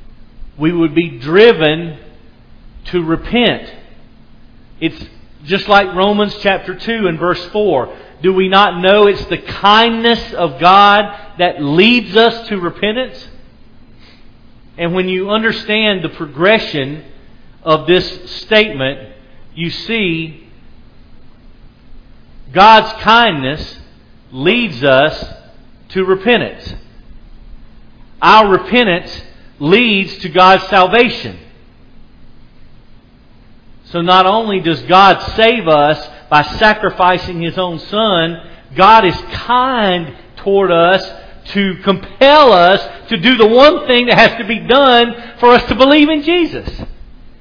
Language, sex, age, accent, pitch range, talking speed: English, male, 40-59, American, 150-225 Hz, 110 wpm